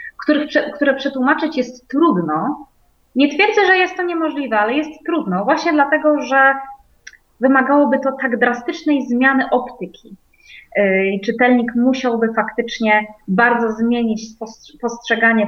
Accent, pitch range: native, 230-285 Hz